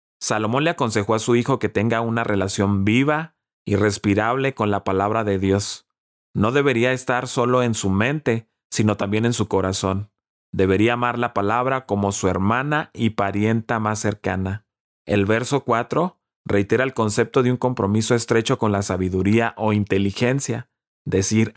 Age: 30-49